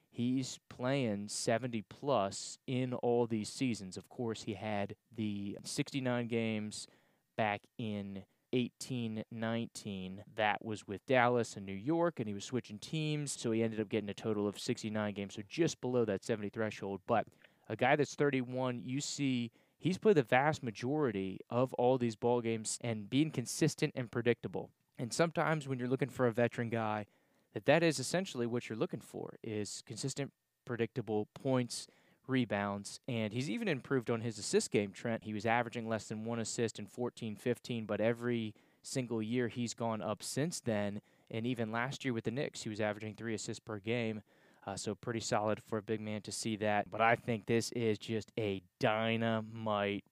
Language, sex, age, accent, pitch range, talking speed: English, male, 20-39, American, 110-130 Hz, 180 wpm